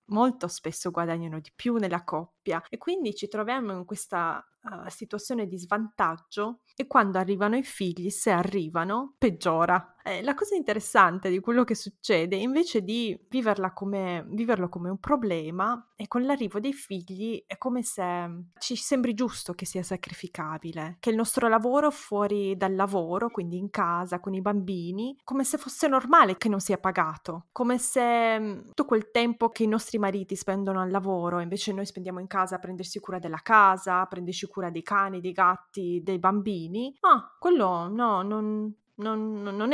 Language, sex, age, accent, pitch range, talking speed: Italian, female, 20-39, native, 180-230 Hz, 170 wpm